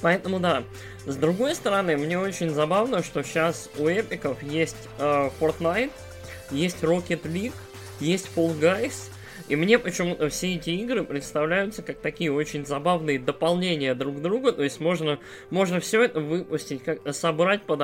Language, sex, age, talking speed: Russian, male, 20-39, 150 wpm